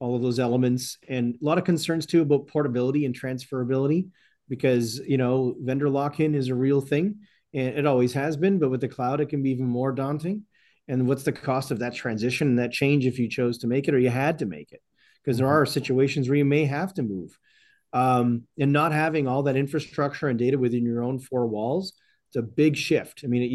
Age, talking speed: 40-59, 230 wpm